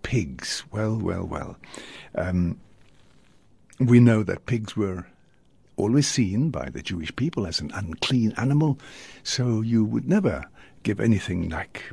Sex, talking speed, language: male, 135 wpm, English